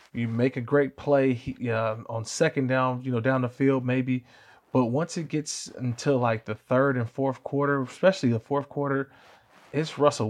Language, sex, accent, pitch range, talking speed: English, male, American, 115-145 Hz, 185 wpm